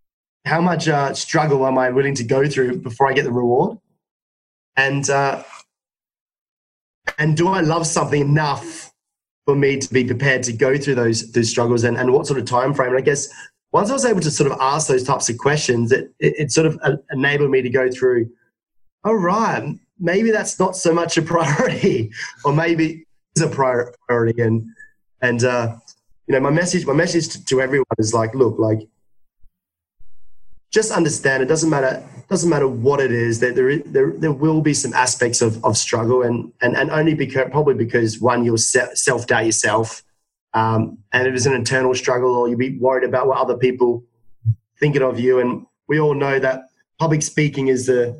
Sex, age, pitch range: male, 20-39, 120-150 Hz